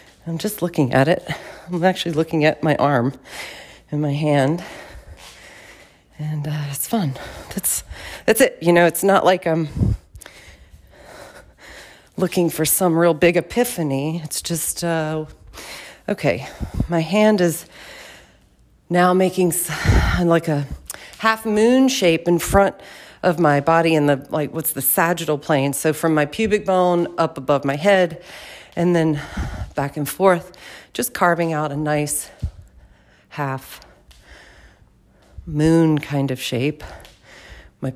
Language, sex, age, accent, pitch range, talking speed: English, female, 40-59, American, 145-175 Hz, 130 wpm